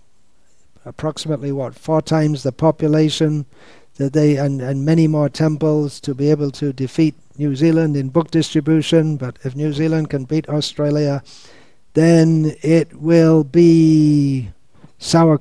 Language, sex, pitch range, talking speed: English, male, 140-160 Hz, 130 wpm